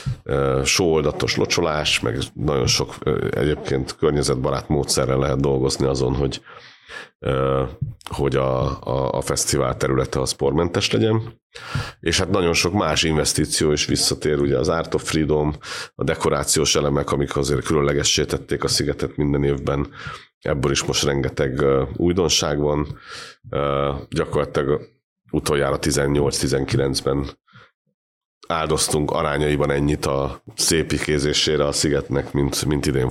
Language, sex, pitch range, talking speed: Hungarian, male, 70-75 Hz, 125 wpm